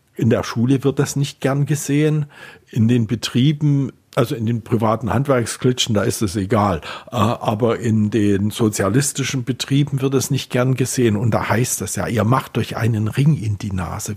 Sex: male